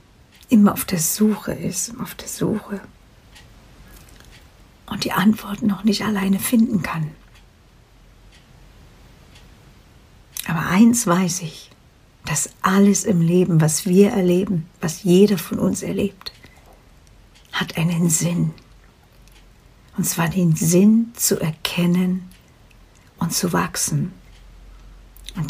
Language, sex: German, female